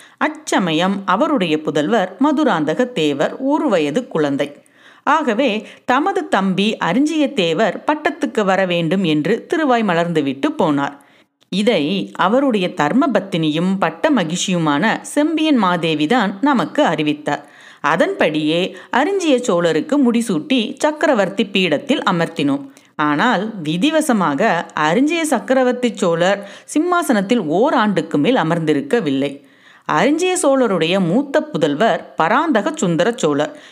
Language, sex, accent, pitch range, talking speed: Tamil, female, native, 165-280 Hz, 90 wpm